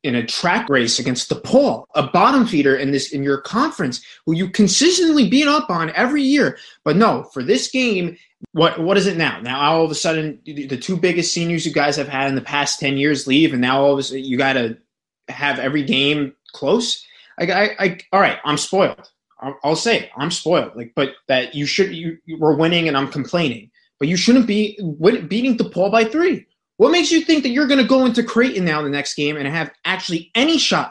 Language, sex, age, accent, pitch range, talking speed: English, male, 20-39, American, 145-230 Hz, 230 wpm